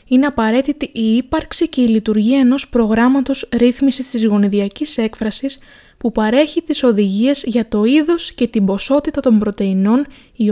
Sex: female